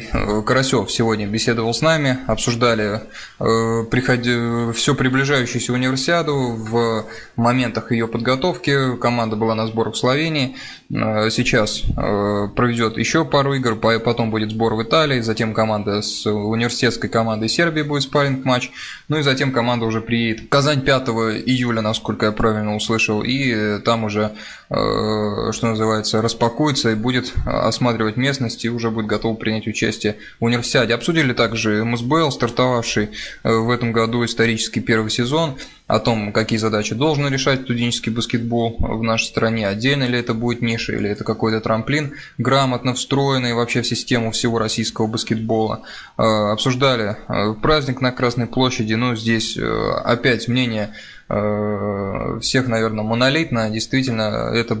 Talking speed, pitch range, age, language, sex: 135 wpm, 110-125 Hz, 20-39, Russian, male